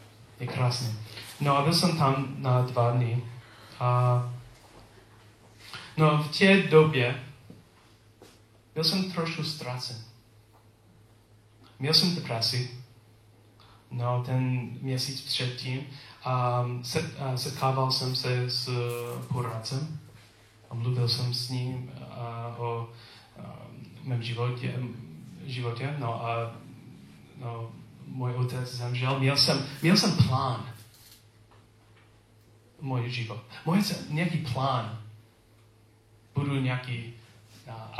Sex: male